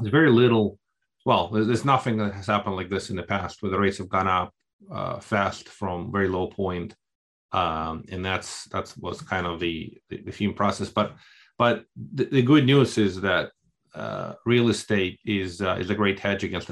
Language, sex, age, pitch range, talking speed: English, male, 30-49, 95-115 Hz, 200 wpm